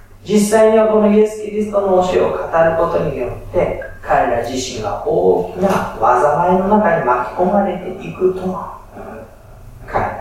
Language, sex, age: Japanese, male, 40-59